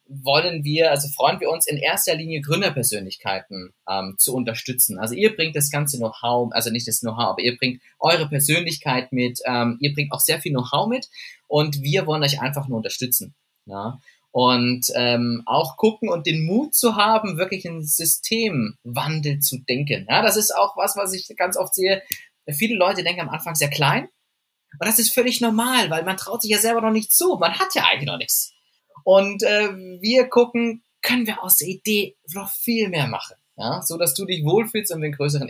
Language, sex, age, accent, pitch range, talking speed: German, male, 20-39, German, 135-195 Hz, 205 wpm